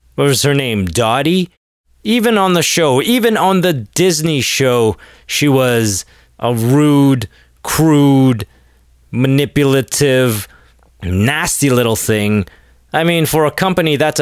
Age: 30-49